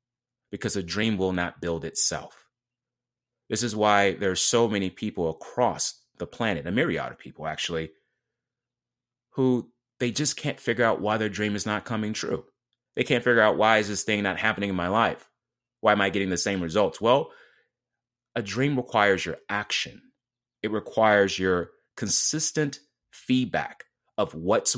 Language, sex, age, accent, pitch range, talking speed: English, male, 30-49, American, 90-120 Hz, 165 wpm